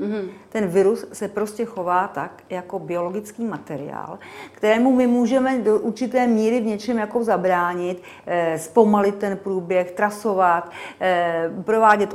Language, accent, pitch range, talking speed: Czech, native, 185-230 Hz, 120 wpm